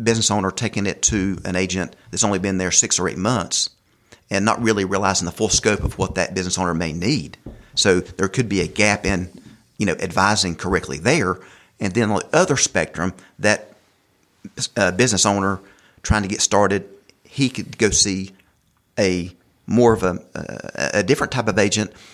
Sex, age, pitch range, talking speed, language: male, 40-59, 95-115 Hz, 185 wpm, English